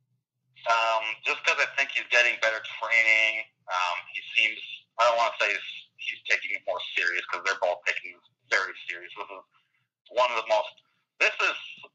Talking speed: 185 wpm